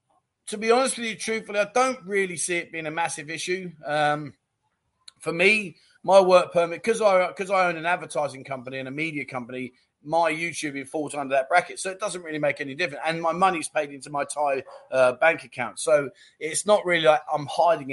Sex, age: male, 30-49